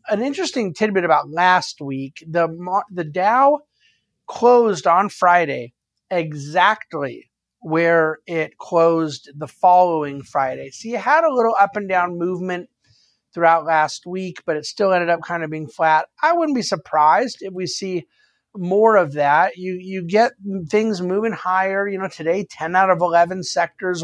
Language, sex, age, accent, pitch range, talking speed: English, male, 50-69, American, 165-205 Hz, 160 wpm